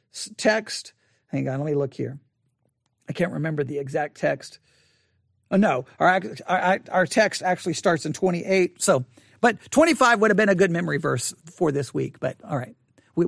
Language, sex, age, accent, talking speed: English, male, 50-69, American, 180 wpm